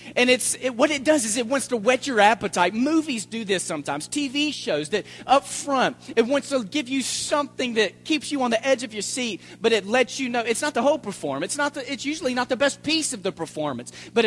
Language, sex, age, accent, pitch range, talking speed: English, male, 40-59, American, 150-230 Hz, 245 wpm